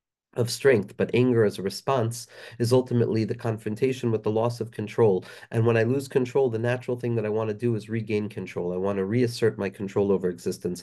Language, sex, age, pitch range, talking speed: English, male, 40-59, 105-120 Hz, 220 wpm